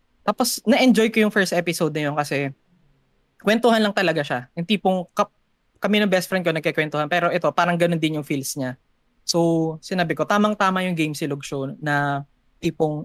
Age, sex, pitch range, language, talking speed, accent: 20-39, female, 150-185 Hz, Filipino, 190 wpm, native